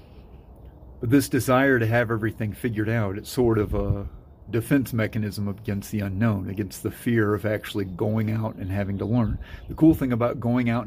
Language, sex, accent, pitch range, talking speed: English, male, American, 105-120 Hz, 190 wpm